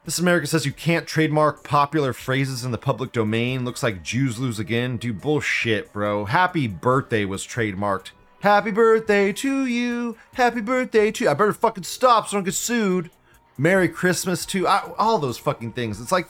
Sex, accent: male, American